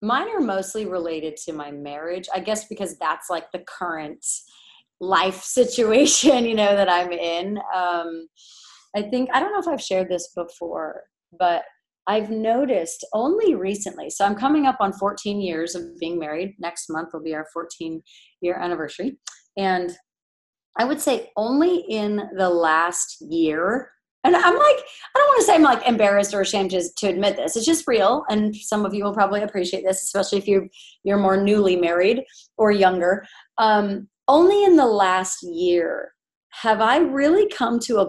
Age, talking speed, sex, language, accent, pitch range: 30-49, 175 wpm, female, English, American, 180-235 Hz